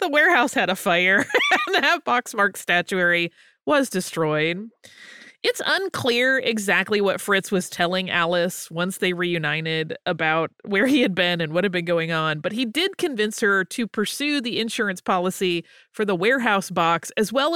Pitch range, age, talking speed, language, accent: 180-260 Hz, 30-49, 170 wpm, English, American